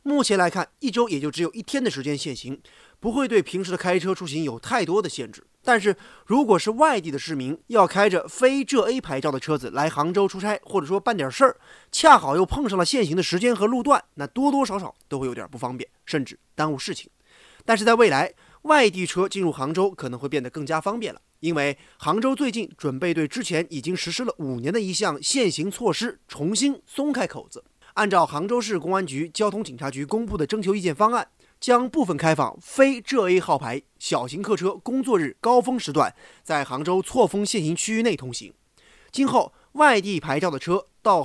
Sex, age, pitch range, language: male, 20-39, 155-235 Hz, Chinese